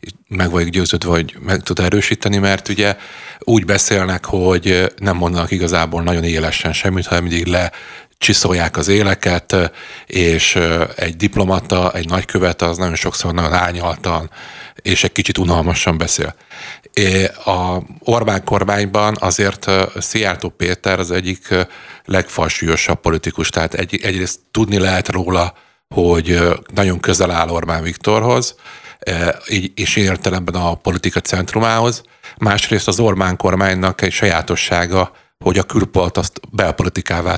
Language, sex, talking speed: Hungarian, male, 125 wpm